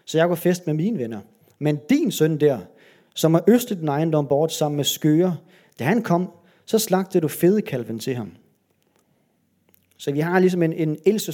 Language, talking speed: Danish, 185 wpm